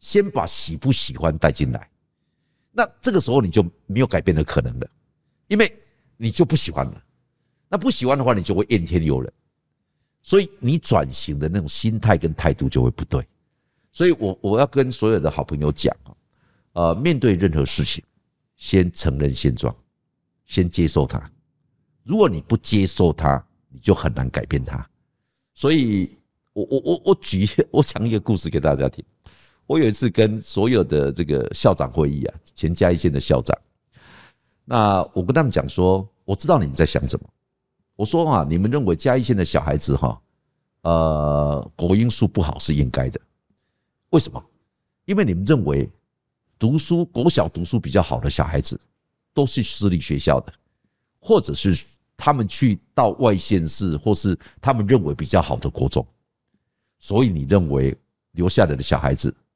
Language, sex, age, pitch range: English, male, 60-79, 75-120 Hz